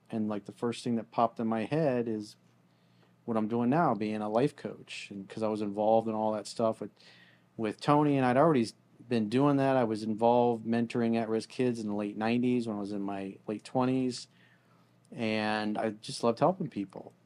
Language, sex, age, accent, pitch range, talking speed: English, male, 40-59, American, 105-130 Hz, 210 wpm